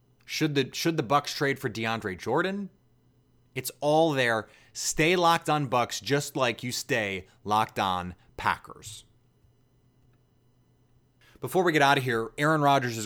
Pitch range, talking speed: 110-130 Hz, 145 wpm